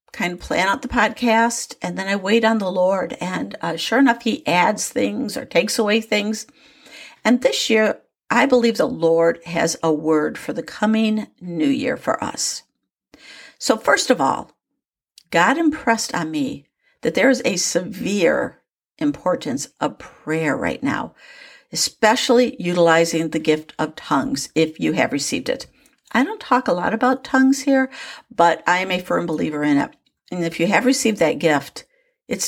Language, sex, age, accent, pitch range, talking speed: English, female, 60-79, American, 175-265 Hz, 175 wpm